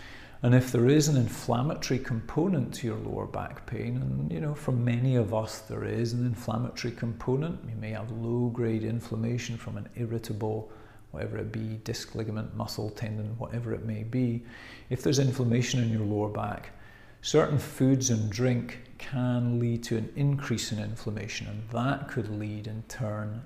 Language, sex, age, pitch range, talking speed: English, male, 40-59, 110-130 Hz, 170 wpm